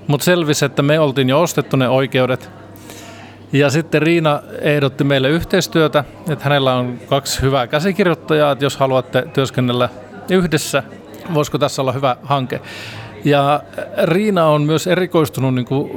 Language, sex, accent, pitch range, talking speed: Finnish, male, native, 125-150 Hz, 145 wpm